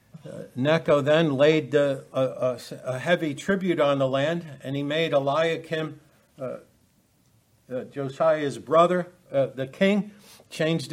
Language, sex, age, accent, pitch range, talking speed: English, male, 60-79, American, 125-150 Hz, 125 wpm